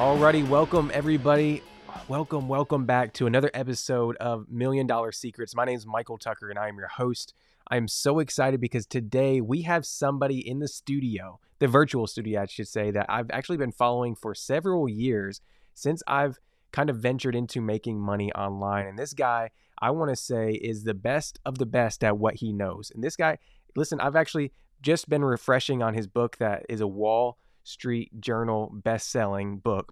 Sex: male